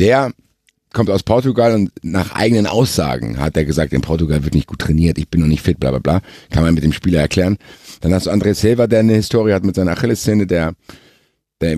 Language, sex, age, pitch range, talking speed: German, male, 50-69, 80-105 Hz, 230 wpm